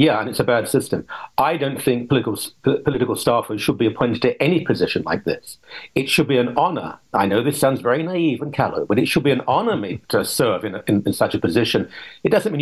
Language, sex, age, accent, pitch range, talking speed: English, male, 50-69, British, 125-170 Hz, 245 wpm